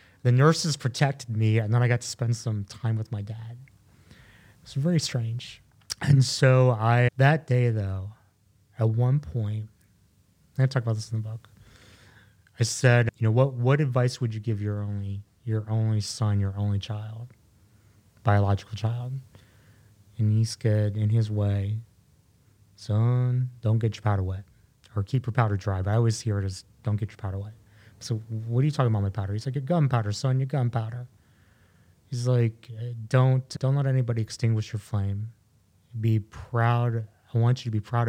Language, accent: English, American